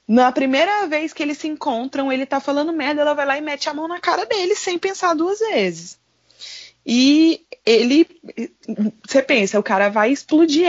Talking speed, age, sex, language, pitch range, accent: 185 wpm, 20-39, female, Portuguese, 200-275 Hz, Brazilian